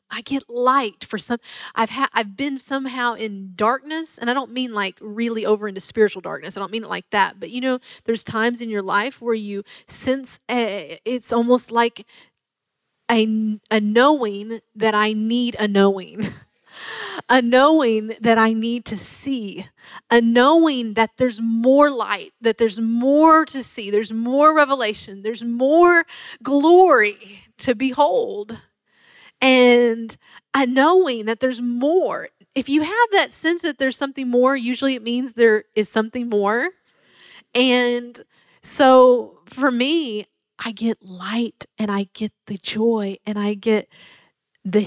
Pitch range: 210-260 Hz